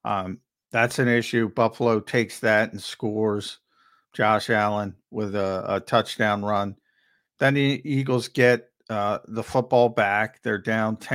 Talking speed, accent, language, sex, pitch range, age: 145 wpm, American, English, male, 110-125 Hz, 50-69